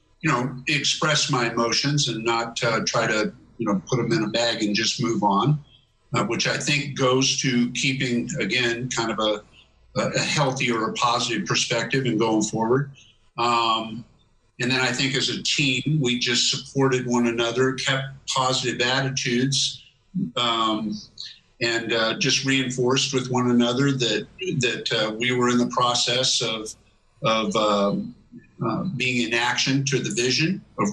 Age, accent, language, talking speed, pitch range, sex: 50-69, American, English, 165 wpm, 115-135 Hz, male